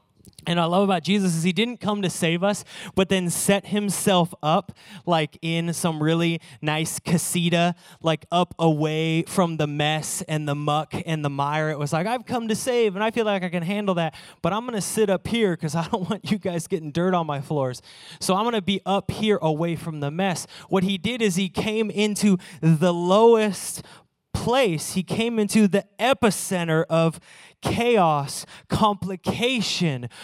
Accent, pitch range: American, 170-210 Hz